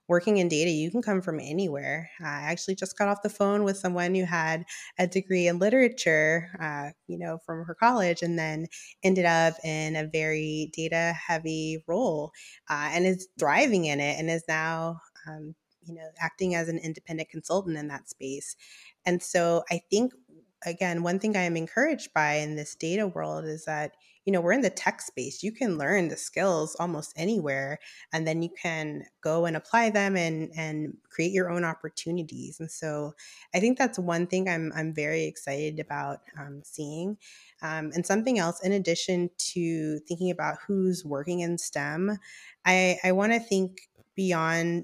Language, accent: English, American